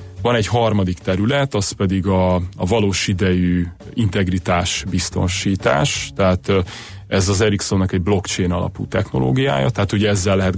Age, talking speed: 30-49, 135 wpm